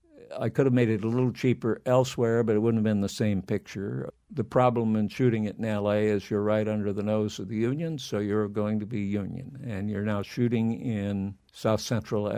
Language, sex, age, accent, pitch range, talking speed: English, male, 60-79, American, 105-130 Hz, 220 wpm